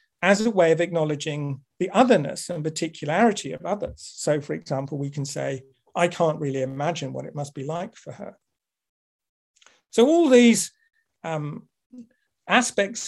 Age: 50-69